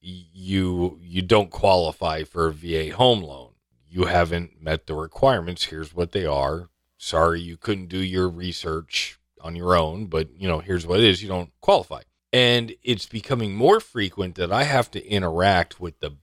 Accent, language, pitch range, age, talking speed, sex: American, English, 80-105 Hz, 40-59, 180 wpm, male